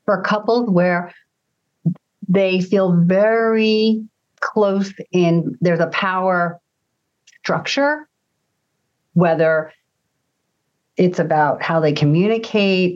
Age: 50-69